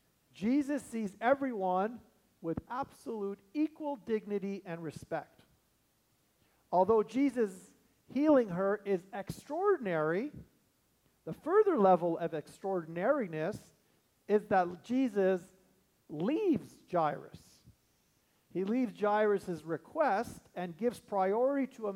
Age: 50-69